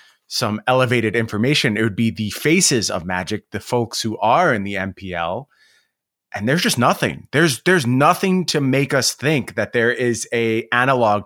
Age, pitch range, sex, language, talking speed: 30-49, 110-145 Hz, male, English, 175 wpm